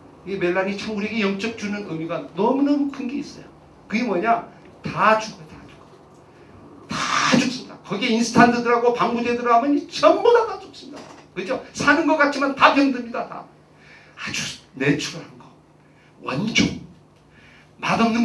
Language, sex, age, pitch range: Korean, male, 40-59, 175-290 Hz